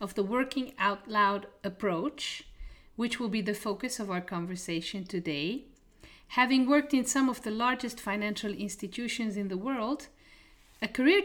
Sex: female